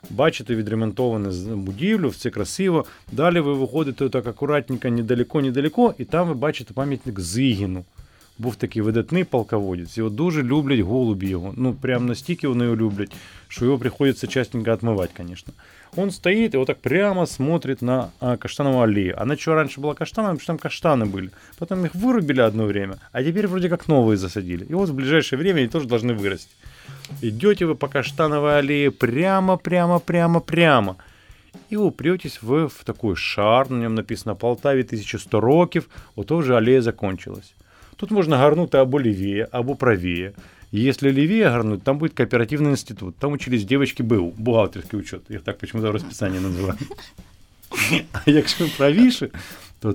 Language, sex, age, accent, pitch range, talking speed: Ukrainian, male, 20-39, native, 110-155 Hz, 160 wpm